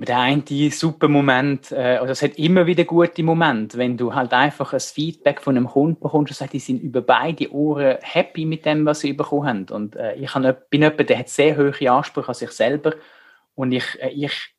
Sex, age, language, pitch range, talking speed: male, 30-49, German, 120-145 Hz, 210 wpm